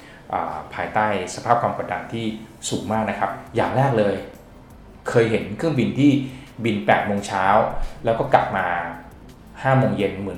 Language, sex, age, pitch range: Thai, male, 20-39, 100-130 Hz